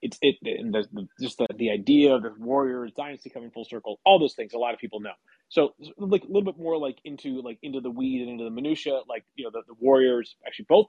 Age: 30-49